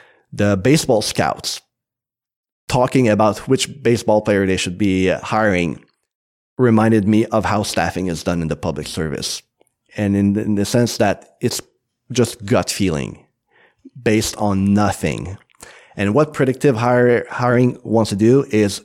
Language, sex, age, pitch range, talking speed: English, male, 30-49, 100-125 Hz, 140 wpm